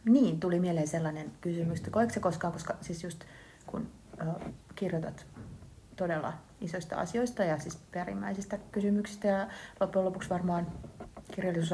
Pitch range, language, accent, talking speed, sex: 165-195 Hz, Finnish, native, 130 wpm, female